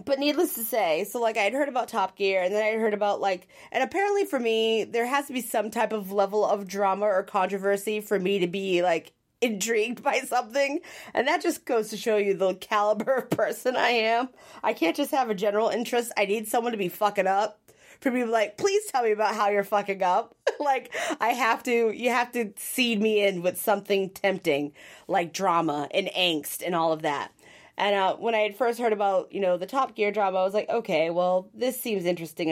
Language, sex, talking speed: English, female, 225 wpm